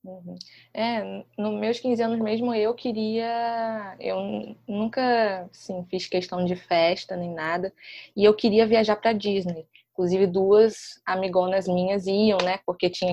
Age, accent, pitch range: 20-39, Brazilian, 180-235 Hz